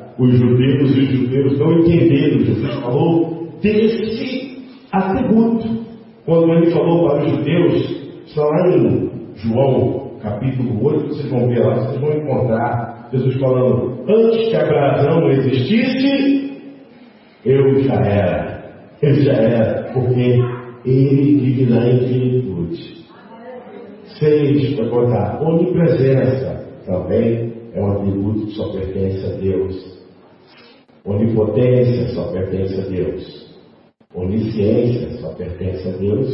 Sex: male